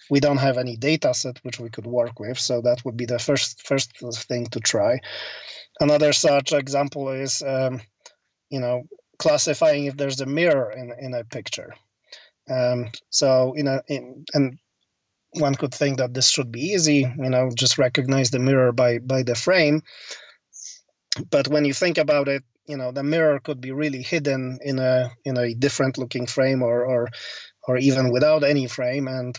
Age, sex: 30-49, male